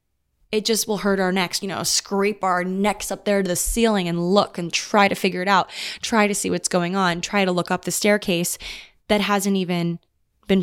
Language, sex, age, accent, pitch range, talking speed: English, female, 20-39, American, 175-215 Hz, 225 wpm